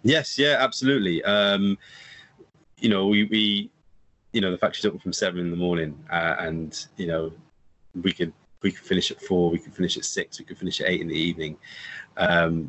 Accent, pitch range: British, 85-105 Hz